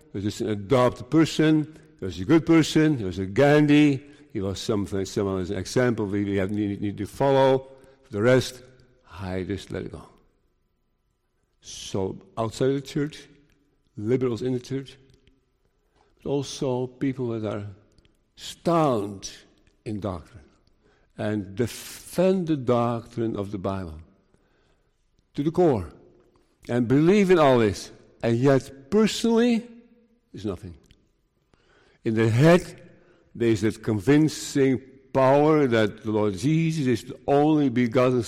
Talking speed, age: 140 wpm, 50-69